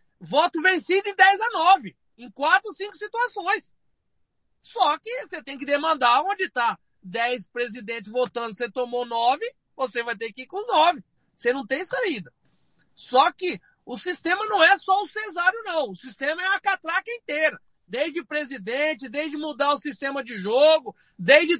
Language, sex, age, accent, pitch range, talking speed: Portuguese, male, 40-59, Brazilian, 255-340 Hz, 165 wpm